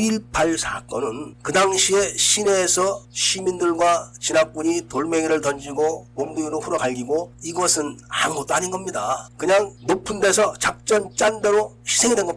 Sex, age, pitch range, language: male, 40-59, 140-185 Hz, Korean